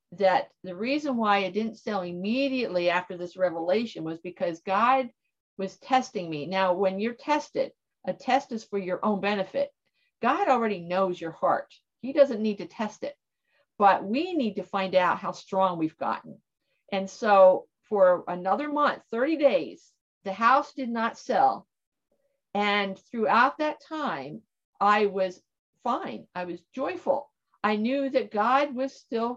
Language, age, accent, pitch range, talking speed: English, 50-69, American, 180-260 Hz, 155 wpm